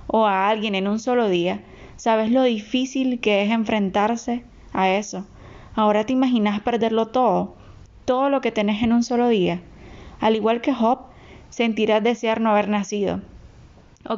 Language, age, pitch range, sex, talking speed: Spanish, 10-29, 205-240 Hz, female, 160 wpm